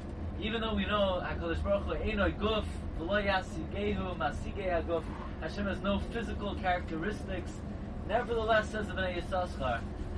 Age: 20-39